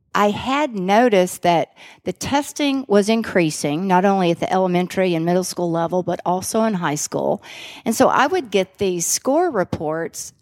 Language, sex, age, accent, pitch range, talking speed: English, female, 50-69, American, 165-195 Hz, 175 wpm